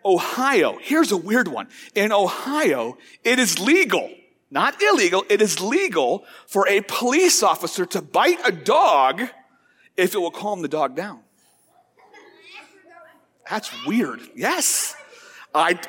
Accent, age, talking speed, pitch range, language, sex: American, 50-69, 130 wpm, 195-300 Hz, English, male